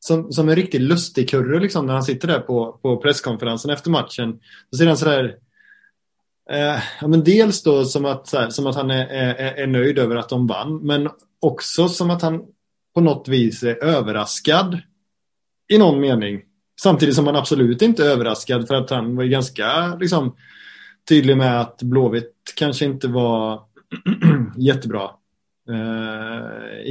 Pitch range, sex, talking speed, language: 120-150 Hz, male, 170 wpm, Swedish